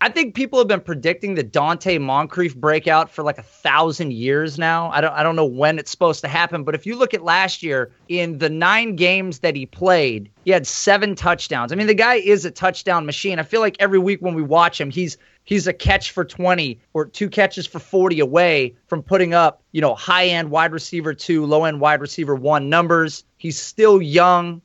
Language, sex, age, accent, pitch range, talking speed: English, male, 30-49, American, 145-180 Hz, 225 wpm